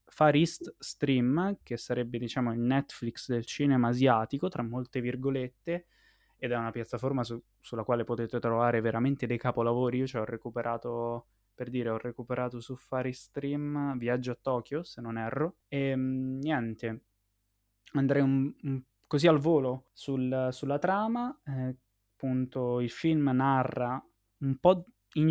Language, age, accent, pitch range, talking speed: Italian, 20-39, native, 120-140 Hz, 150 wpm